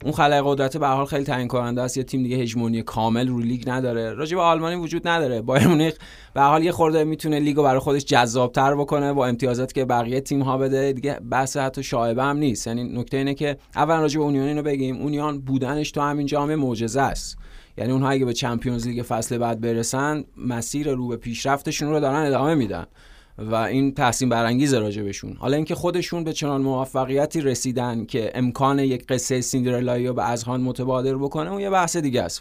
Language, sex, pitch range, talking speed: Persian, male, 120-140 Hz, 195 wpm